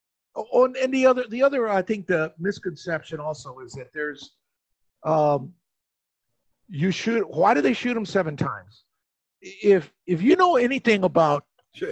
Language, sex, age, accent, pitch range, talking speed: English, male, 50-69, American, 160-220 Hz, 150 wpm